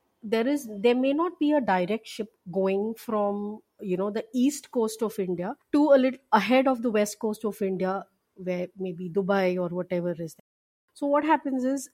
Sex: female